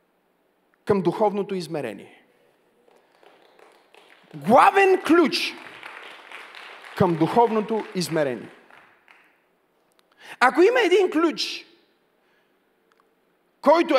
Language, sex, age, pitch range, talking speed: Bulgarian, male, 40-59, 235-330 Hz, 55 wpm